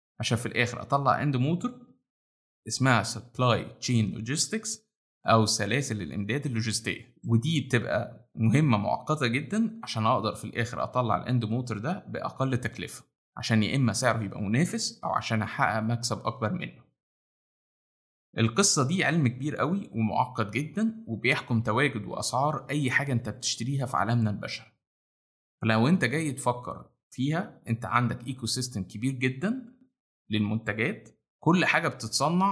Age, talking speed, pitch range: 20-39, 135 wpm, 110-145 Hz